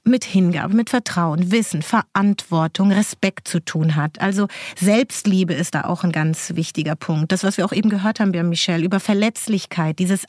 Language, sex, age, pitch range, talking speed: German, female, 30-49, 180-220 Hz, 175 wpm